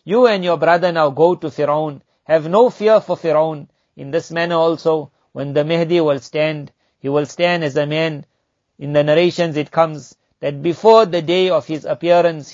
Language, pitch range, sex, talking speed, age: English, 155-180 Hz, male, 190 wpm, 50-69